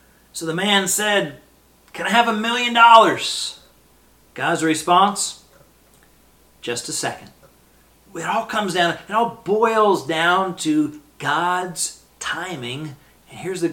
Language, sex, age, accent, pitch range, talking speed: English, male, 40-59, American, 130-175 Hz, 125 wpm